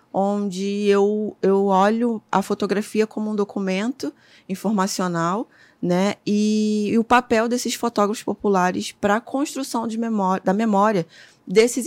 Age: 20-39